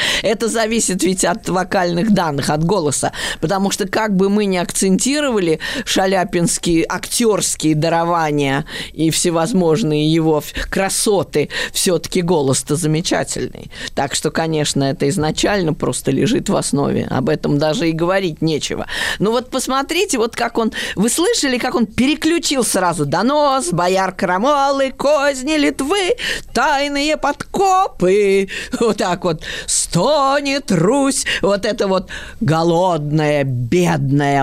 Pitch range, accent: 155-245 Hz, native